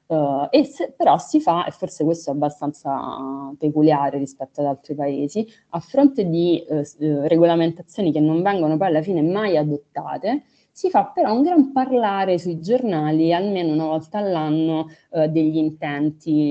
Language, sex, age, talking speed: Italian, female, 20-39, 165 wpm